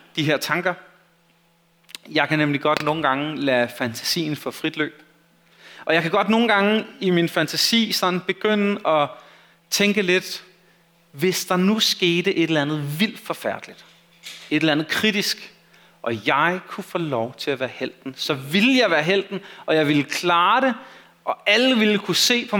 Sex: male